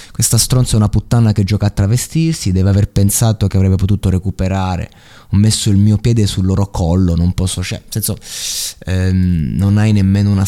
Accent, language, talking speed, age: native, Italian, 190 wpm, 20-39